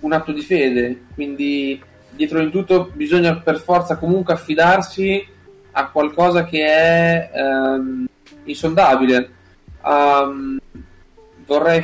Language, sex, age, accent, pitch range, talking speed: Italian, male, 20-39, native, 130-180 Hz, 105 wpm